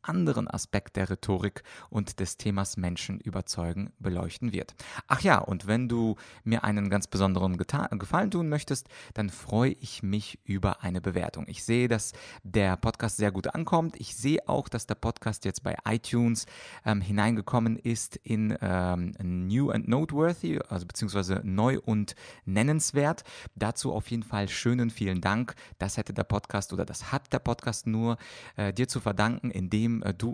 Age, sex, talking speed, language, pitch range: 30-49, male, 165 wpm, German, 95-120 Hz